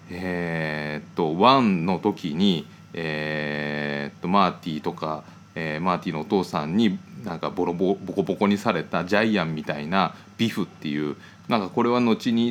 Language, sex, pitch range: Japanese, male, 80-105 Hz